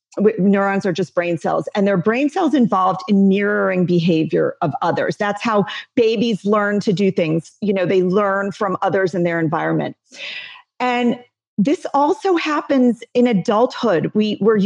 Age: 40-59